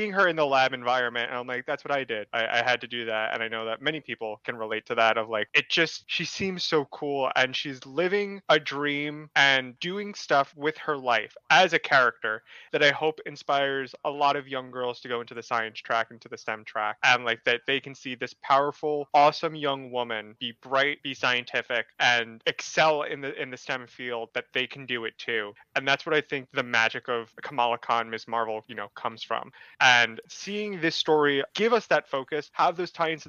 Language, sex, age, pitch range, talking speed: English, male, 20-39, 125-155 Hz, 230 wpm